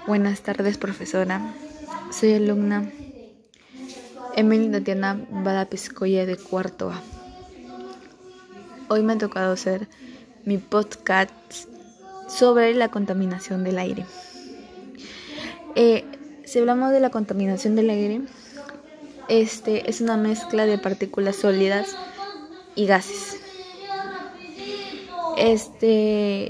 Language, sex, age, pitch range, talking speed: Spanish, female, 20-39, 195-245 Hz, 95 wpm